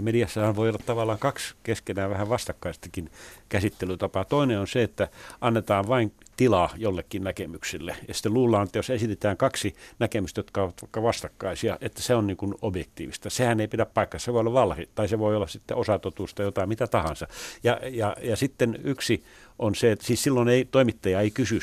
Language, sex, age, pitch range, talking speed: Finnish, male, 60-79, 95-115 Hz, 185 wpm